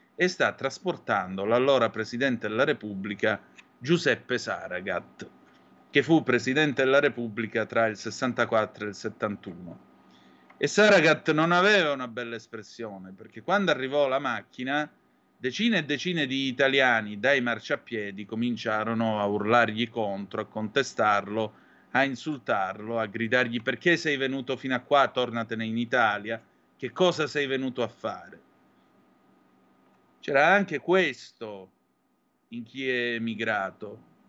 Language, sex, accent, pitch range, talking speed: Italian, male, native, 110-135 Hz, 125 wpm